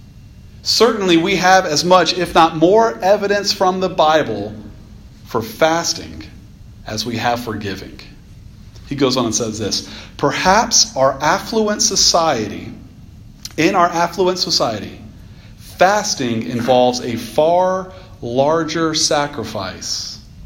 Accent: American